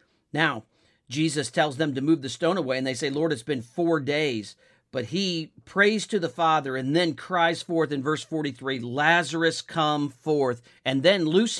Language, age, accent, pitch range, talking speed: English, 50-69, American, 130-175 Hz, 185 wpm